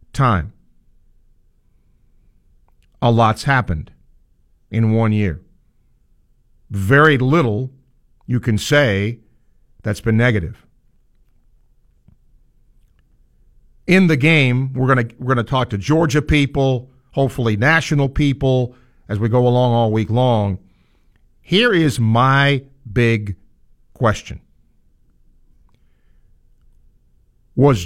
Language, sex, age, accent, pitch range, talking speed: English, male, 50-69, American, 105-145 Hz, 95 wpm